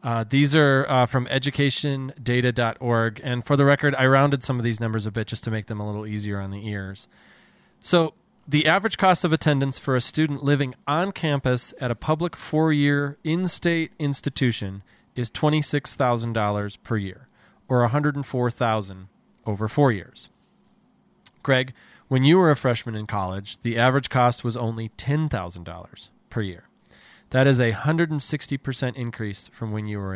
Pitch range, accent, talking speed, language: 105-145 Hz, American, 160 wpm, English